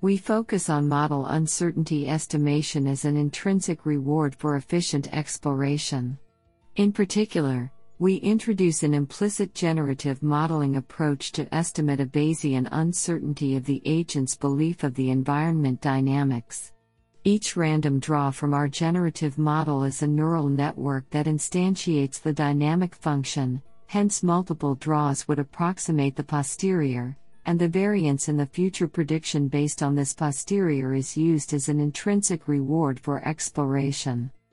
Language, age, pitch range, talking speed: English, 50-69, 140-165 Hz, 135 wpm